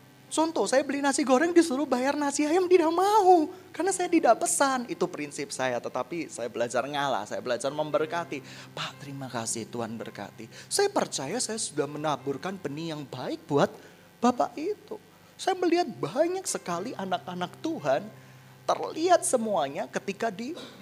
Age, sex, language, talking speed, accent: 20-39, male, Indonesian, 145 wpm, native